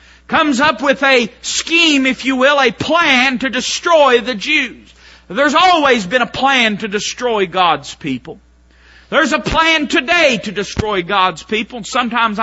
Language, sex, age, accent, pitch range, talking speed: English, male, 40-59, American, 235-315 Hz, 155 wpm